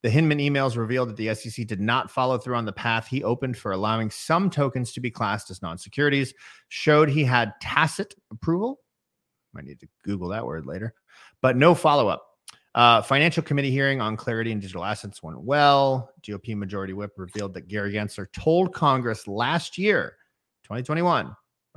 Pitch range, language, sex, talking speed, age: 105-135 Hz, English, male, 170 wpm, 30-49